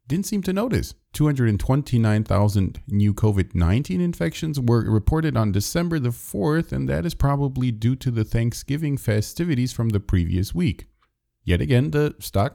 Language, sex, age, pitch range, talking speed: English, male, 40-59, 95-140 Hz, 150 wpm